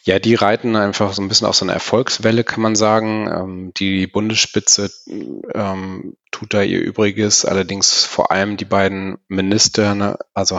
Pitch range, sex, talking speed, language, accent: 95-105 Hz, male, 155 wpm, German, German